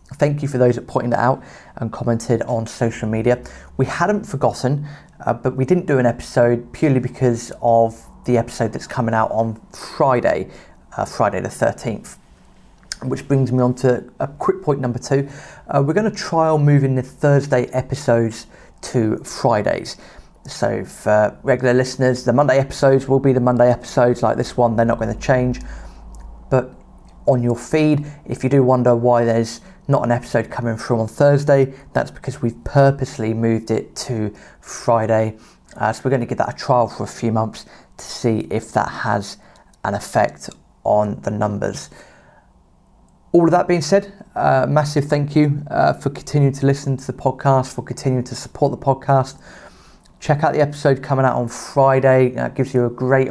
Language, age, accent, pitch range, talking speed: English, 30-49, British, 115-140 Hz, 185 wpm